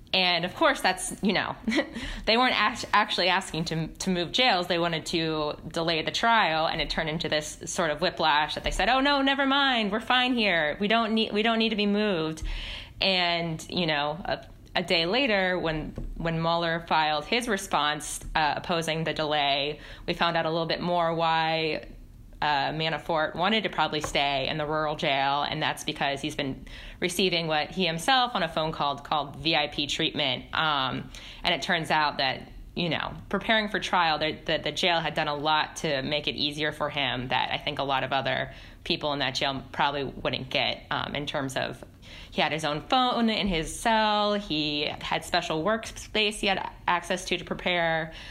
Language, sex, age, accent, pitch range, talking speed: English, female, 20-39, American, 150-190 Hz, 195 wpm